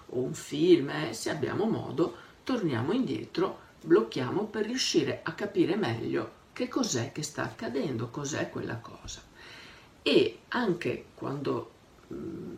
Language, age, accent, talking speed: Italian, 50-69, native, 130 wpm